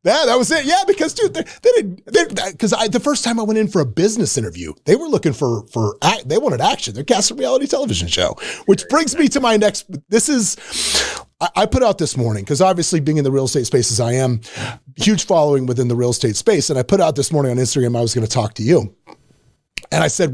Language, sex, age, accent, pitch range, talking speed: English, male, 30-49, American, 125-205 Hz, 250 wpm